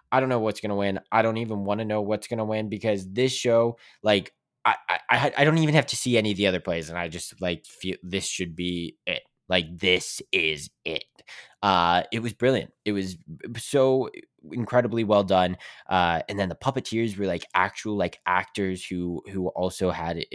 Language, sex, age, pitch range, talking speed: English, male, 10-29, 90-110 Hz, 210 wpm